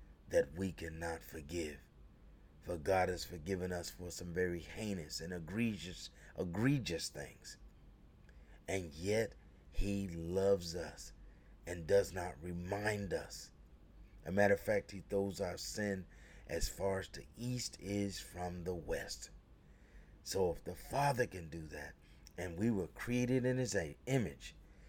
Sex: male